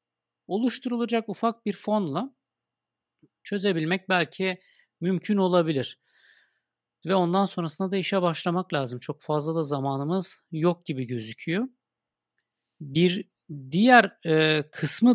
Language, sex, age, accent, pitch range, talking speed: Turkish, male, 50-69, native, 130-175 Hz, 100 wpm